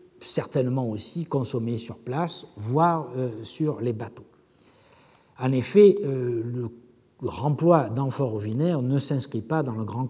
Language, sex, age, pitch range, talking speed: French, male, 60-79, 125-195 Hz, 130 wpm